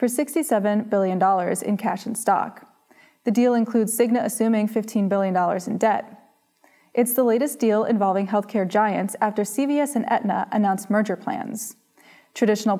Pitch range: 200-240 Hz